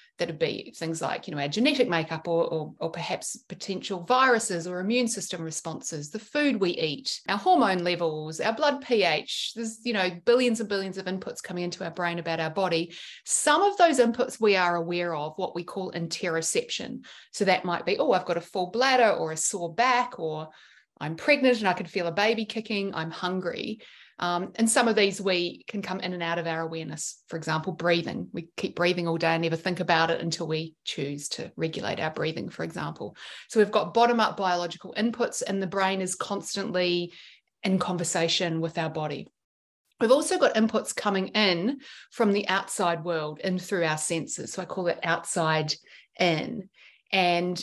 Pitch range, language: 170-220 Hz, English